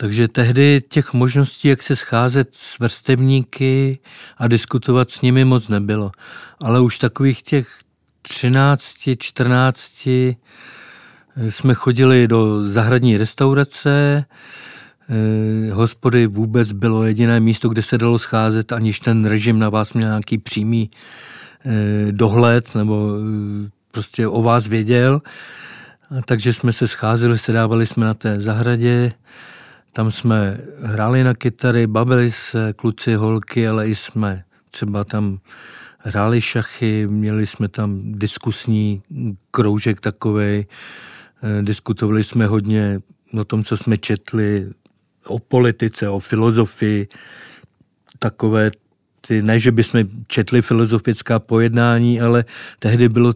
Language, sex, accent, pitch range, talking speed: Czech, male, native, 110-120 Hz, 115 wpm